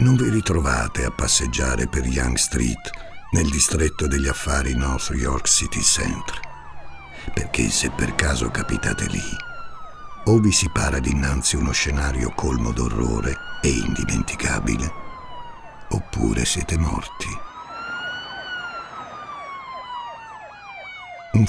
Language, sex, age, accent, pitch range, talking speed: Italian, male, 60-79, native, 75-105 Hz, 105 wpm